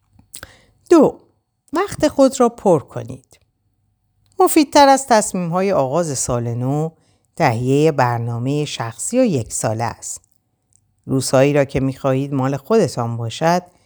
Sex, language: female, Persian